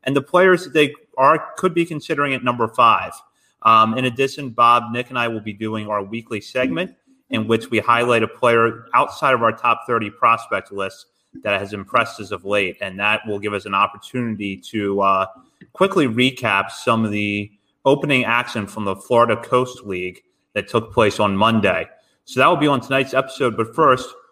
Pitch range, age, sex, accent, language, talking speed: 105-130 Hz, 30-49, male, American, English, 190 wpm